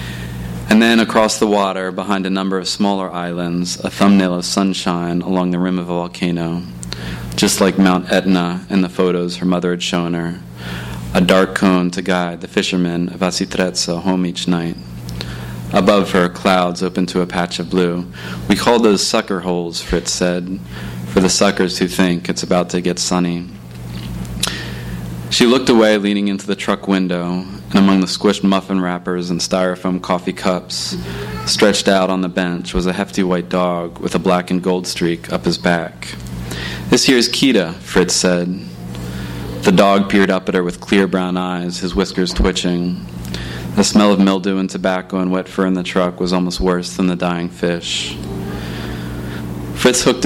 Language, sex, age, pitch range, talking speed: English, male, 30-49, 80-95 Hz, 175 wpm